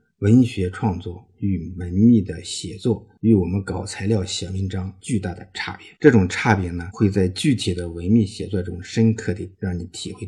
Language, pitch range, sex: Chinese, 90-110 Hz, male